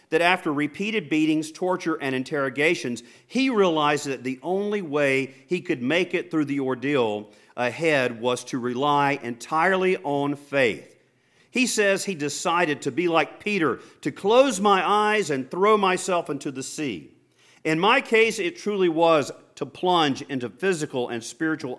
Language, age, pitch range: English, 50-69, 140-185 Hz